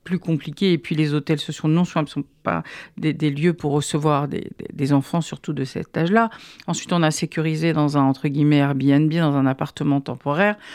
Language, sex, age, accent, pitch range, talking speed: French, female, 50-69, French, 155-190 Hz, 205 wpm